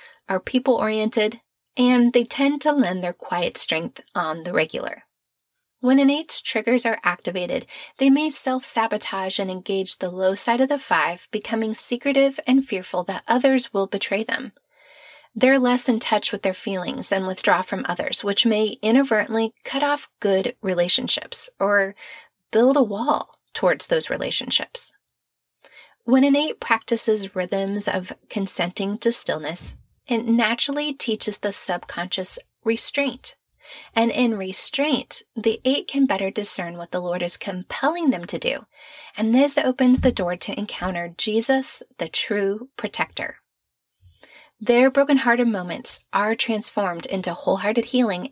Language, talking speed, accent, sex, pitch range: English, 140 wpm, American, female, 195-260 Hz